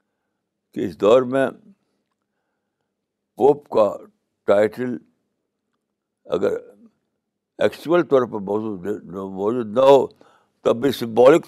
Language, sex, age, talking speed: Urdu, male, 60-79, 90 wpm